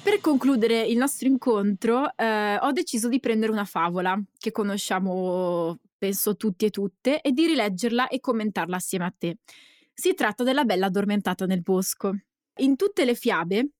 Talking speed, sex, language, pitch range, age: 160 wpm, female, Italian, 200-275 Hz, 20-39